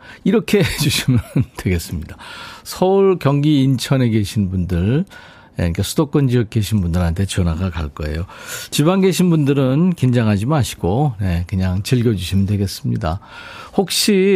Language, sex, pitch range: Korean, male, 100-160 Hz